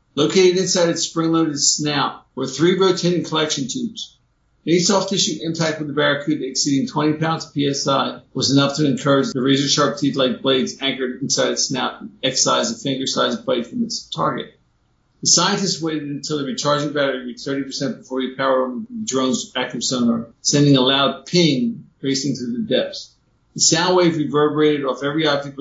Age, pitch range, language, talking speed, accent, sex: 50-69, 135-160 Hz, English, 170 wpm, American, male